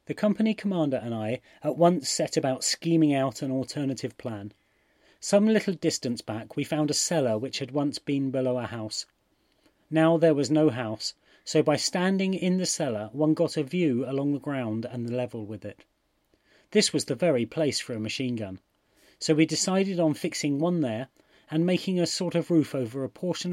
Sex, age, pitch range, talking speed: male, 30-49, 125-165 Hz, 195 wpm